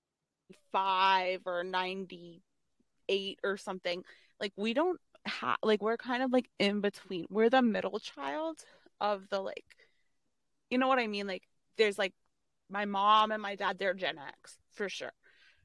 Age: 20-39